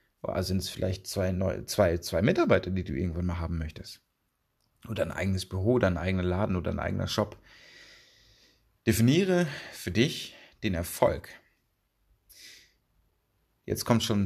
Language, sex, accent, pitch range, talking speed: German, male, German, 95-120 Hz, 140 wpm